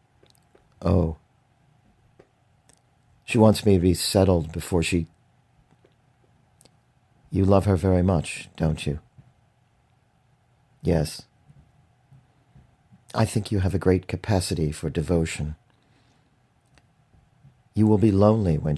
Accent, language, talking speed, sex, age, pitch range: American, English, 100 wpm, male, 50-69, 90-120 Hz